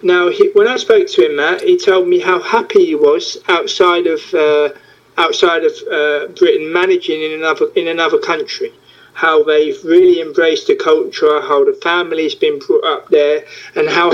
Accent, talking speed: British, 185 wpm